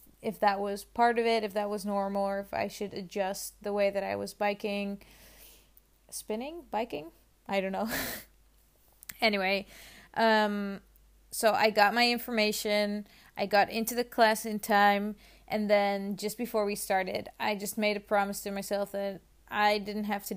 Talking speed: 170 wpm